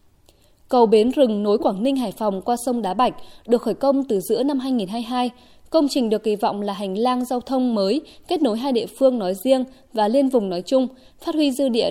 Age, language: 20-39, Vietnamese